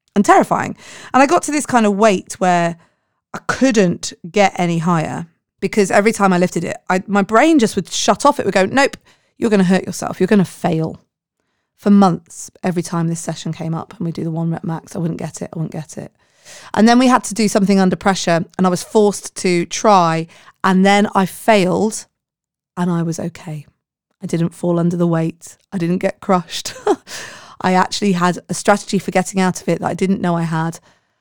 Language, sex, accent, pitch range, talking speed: English, female, British, 170-210 Hz, 215 wpm